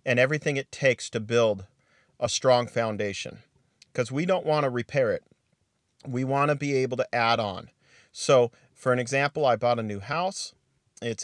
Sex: male